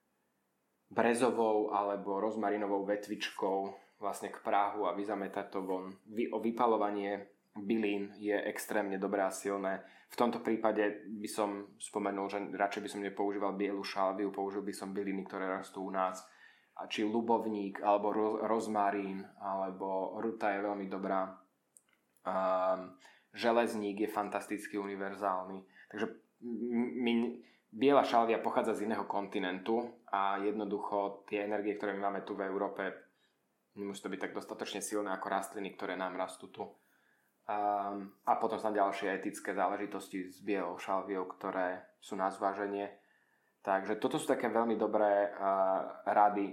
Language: Slovak